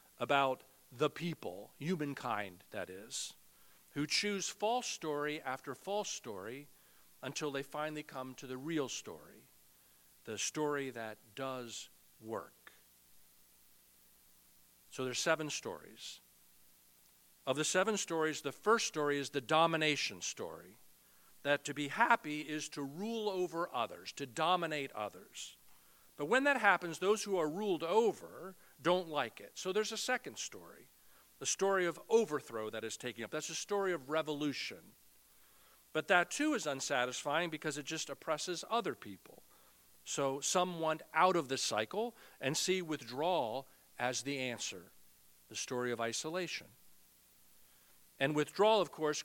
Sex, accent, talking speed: male, American, 140 wpm